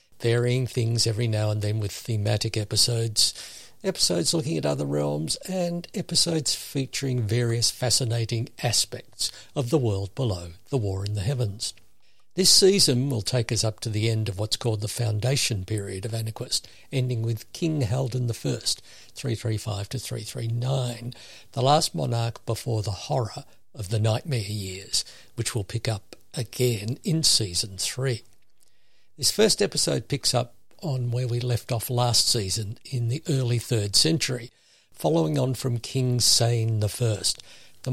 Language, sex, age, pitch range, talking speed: English, male, 60-79, 110-130 Hz, 150 wpm